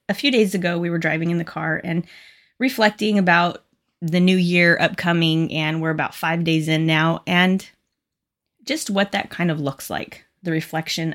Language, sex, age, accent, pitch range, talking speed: English, female, 20-39, American, 160-195 Hz, 185 wpm